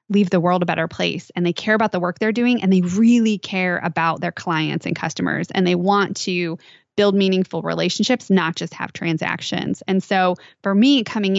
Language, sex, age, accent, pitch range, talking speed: English, female, 20-39, American, 170-205 Hz, 205 wpm